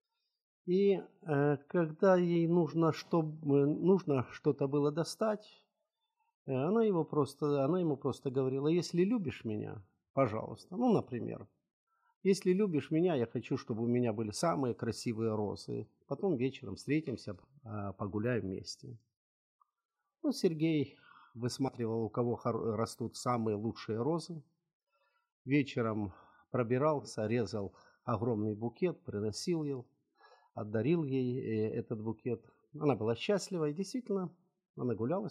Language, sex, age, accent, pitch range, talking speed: Ukrainian, male, 50-69, native, 115-170 Hz, 115 wpm